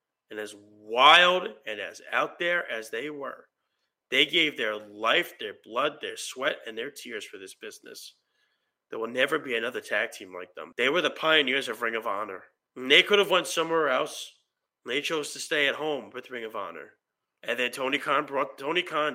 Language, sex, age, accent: English, male, 30-49, American